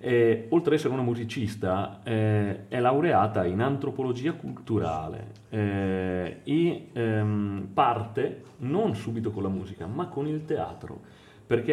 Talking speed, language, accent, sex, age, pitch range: 135 wpm, Italian, native, male, 30-49, 105-135 Hz